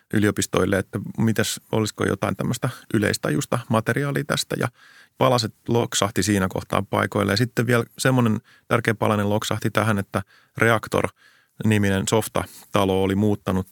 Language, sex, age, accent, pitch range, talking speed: Finnish, male, 30-49, native, 100-115 Hz, 120 wpm